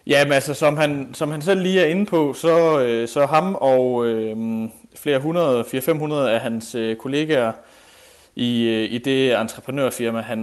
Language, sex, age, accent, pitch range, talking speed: Danish, male, 30-49, native, 110-140 Hz, 150 wpm